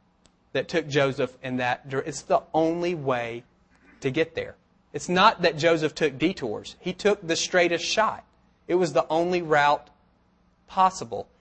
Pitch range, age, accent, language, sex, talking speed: 145-185 Hz, 30-49, American, English, male, 160 wpm